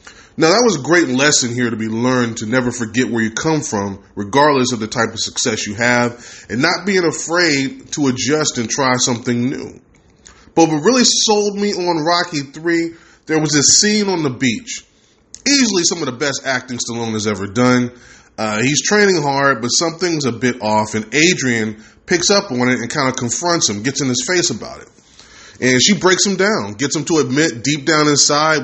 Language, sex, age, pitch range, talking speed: English, male, 20-39, 120-165 Hz, 205 wpm